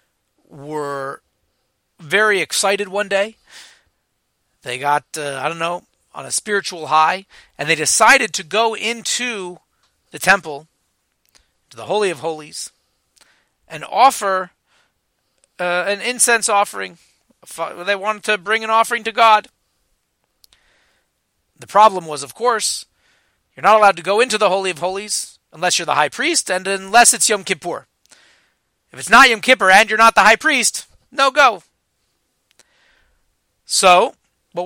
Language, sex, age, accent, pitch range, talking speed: English, male, 40-59, American, 160-220 Hz, 140 wpm